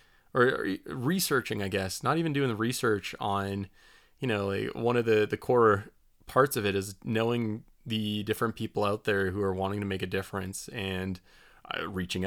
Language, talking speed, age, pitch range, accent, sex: English, 185 wpm, 20-39, 95-120 Hz, American, male